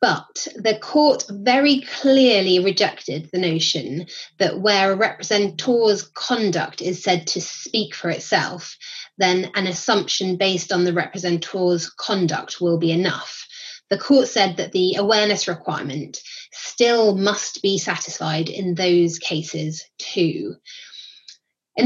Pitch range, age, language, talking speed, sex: 180-215 Hz, 20-39, English, 125 wpm, female